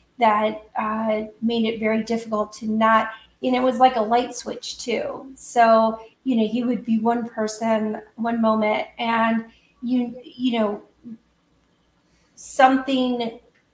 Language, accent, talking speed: English, American, 135 wpm